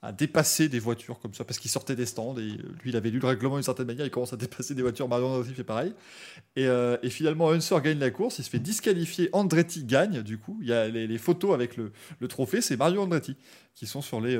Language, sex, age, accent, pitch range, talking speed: French, male, 20-39, French, 115-155 Hz, 265 wpm